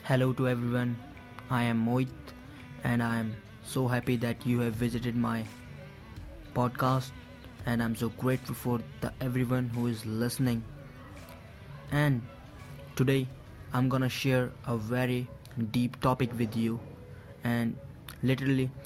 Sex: male